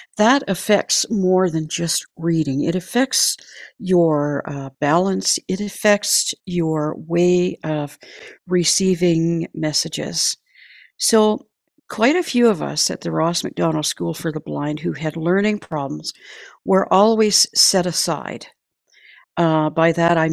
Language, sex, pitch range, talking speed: English, female, 155-185 Hz, 130 wpm